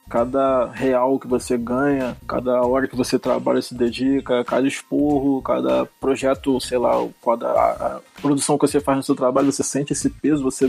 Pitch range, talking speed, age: 125-145 Hz, 185 wpm, 20-39